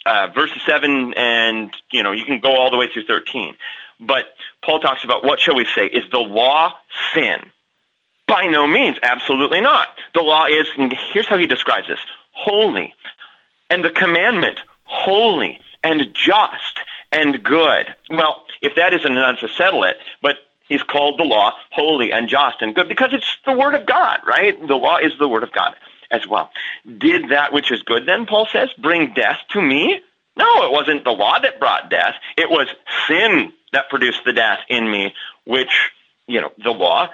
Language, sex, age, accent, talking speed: English, male, 30-49, American, 190 wpm